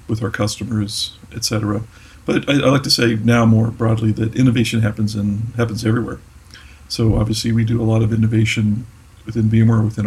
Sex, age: male, 50-69